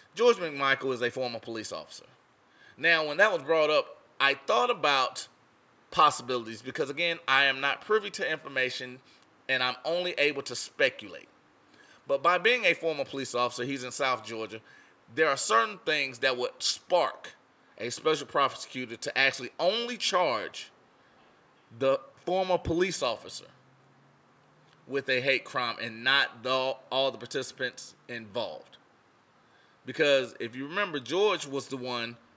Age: 30-49